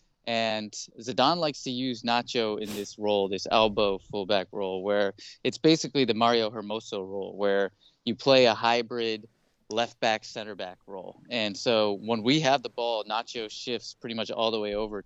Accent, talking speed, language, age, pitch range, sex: American, 165 wpm, English, 20-39, 105-125 Hz, male